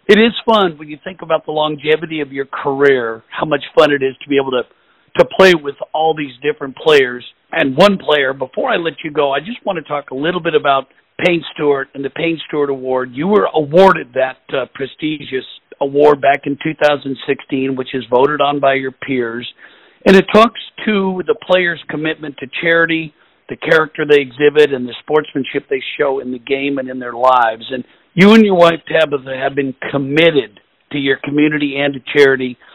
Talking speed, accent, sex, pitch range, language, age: 200 wpm, American, male, 135-160 Hz, English, 50-69